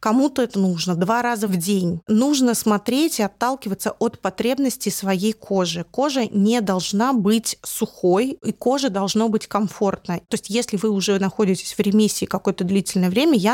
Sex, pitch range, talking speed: female, 185-220 Hz, 165 wpm